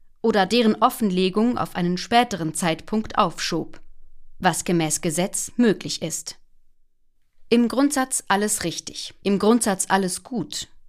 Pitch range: 175-225 Hz